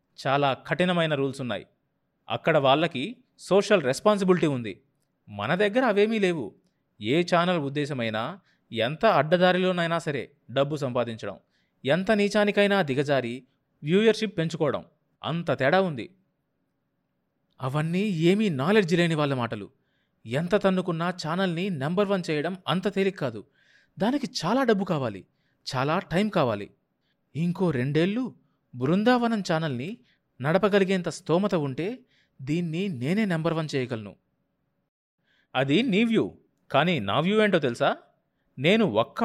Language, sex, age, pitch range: Telugu, male, 30-49, 135-195 Hz